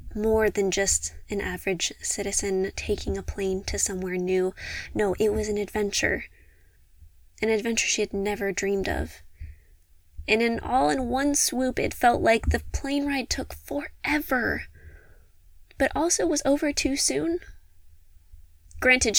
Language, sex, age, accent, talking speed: English, female, 20-39, American, 140 wpm